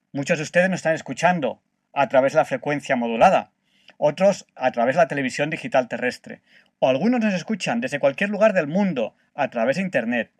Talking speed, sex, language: 190 wpm, male, Spanish